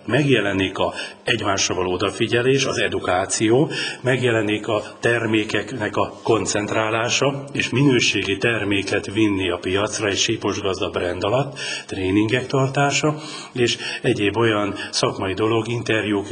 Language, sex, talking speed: Hungarian, male, 110 wpm